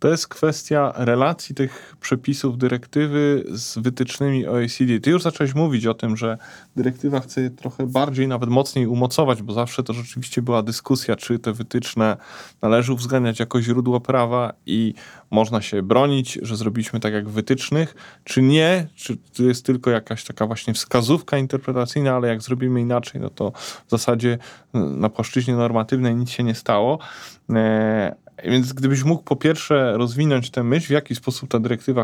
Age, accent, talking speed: 20-39, native, 165 wpm